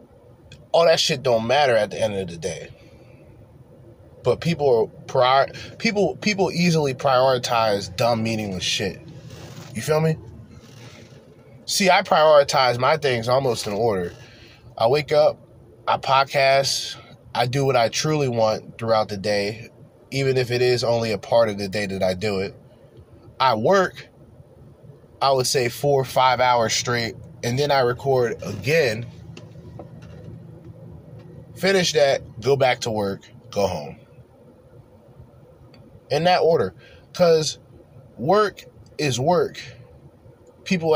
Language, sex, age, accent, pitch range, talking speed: English, male, 20-39, American, 120-150 Hz, 135 wpm